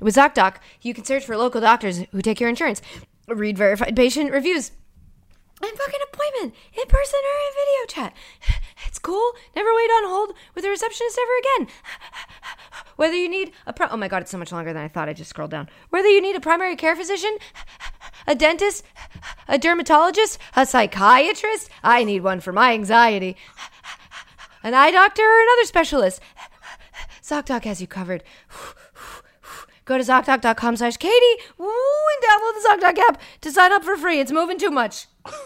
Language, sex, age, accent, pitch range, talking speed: English, female, 20-39, American, 230-365 Hz, 175 wpm